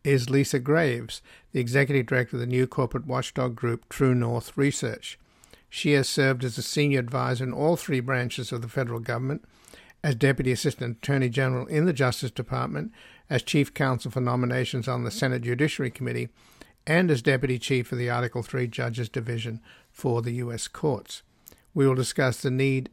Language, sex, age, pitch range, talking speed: English, male, 60-79, 125-140 Hz, 180 wpm